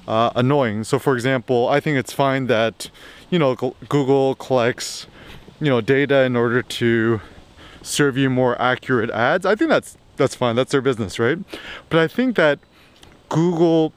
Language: English